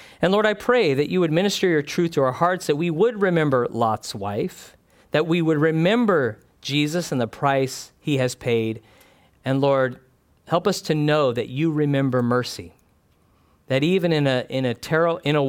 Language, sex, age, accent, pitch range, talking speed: English, male, 40-59, American, 125-160 Hz, 190 wpm